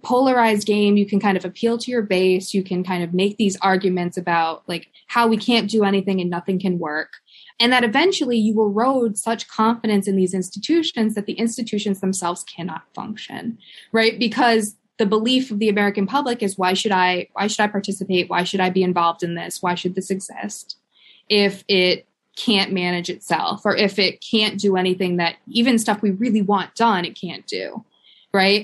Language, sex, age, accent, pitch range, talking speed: English, female, 20-39, American, 185-225 Hz, 195 wpm